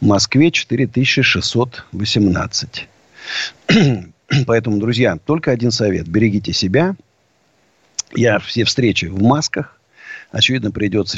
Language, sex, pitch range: Russian, male, 100-130 Hz